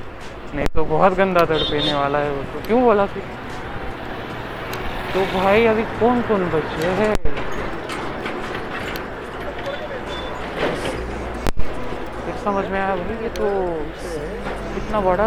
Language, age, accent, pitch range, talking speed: Marathi, 30-49, native, 165-210 Hz, 45 wpm